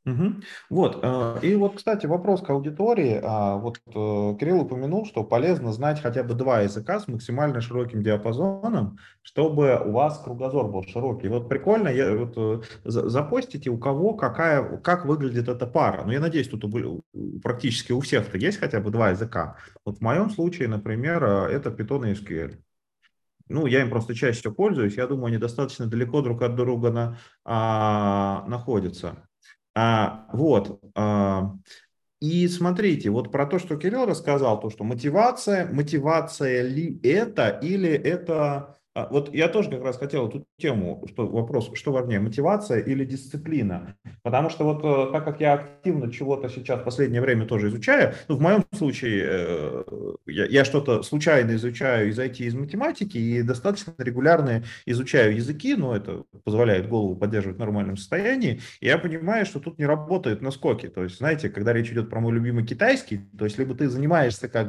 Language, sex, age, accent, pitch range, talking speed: Russian, male, 30-49, native, 110-150 Hz, 155 wpm